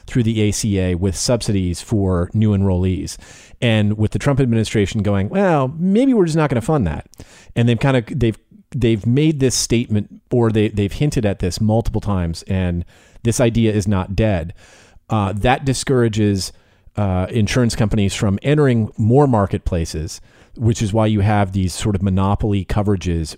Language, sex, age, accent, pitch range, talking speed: English, male, 40-59, American, 95-115 Hz, 170 wpm